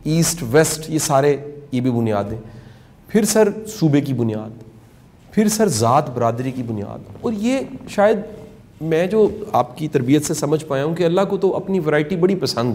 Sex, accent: male, Indian